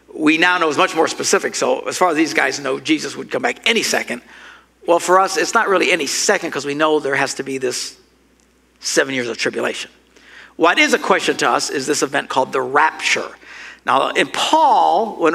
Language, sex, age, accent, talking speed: English, male, 60-79, American, 220 wpm